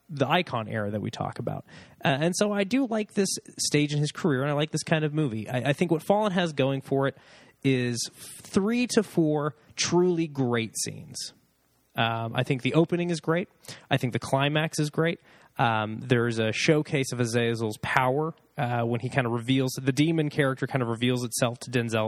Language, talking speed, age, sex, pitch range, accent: English, 205 wpm, 20-39, male, 120-165 Hz, American